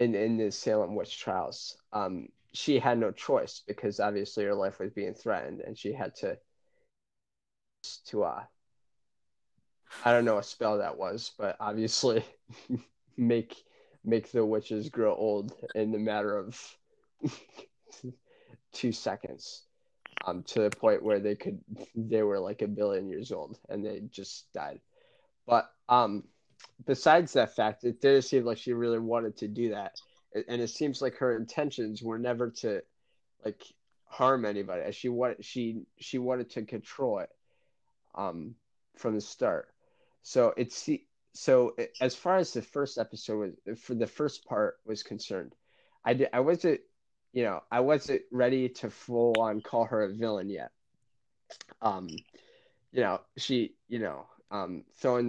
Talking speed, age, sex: 160 wpm, 20-39, male